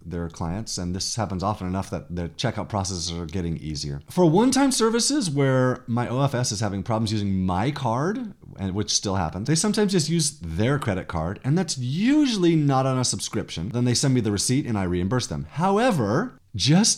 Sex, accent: male, American